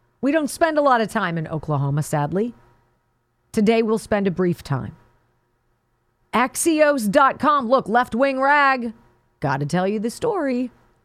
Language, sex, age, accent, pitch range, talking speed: English, female, 40-59, American, 175-290 Hz, 140 wpm